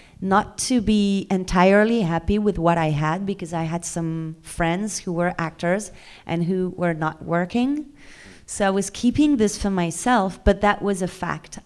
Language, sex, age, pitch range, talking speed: English, female, 30-49, 170-215 Hz, 175 wpm